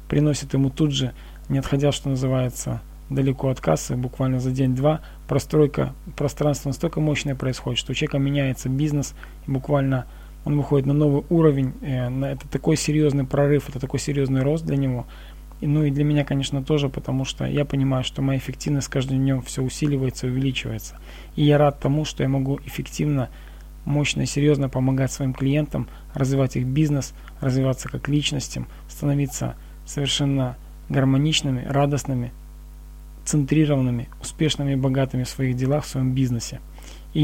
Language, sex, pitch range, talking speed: Russian, male, 130-145 Hz, 155 wpm